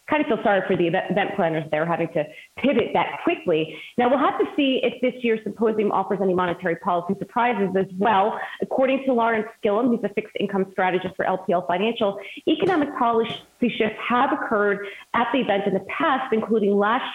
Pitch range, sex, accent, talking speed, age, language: 185-225 Hz, female, American, 190 wpm, 30-49, English